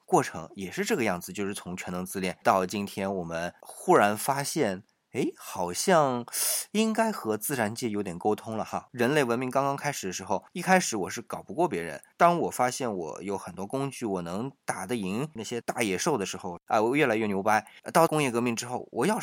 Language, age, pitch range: Chinese, 20-39, 95-140 Hz